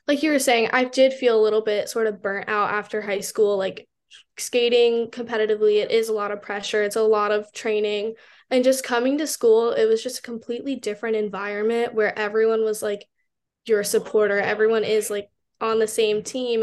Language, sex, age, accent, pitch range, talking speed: English, female, 10-29, American, 215-235 Hz, 200 wpm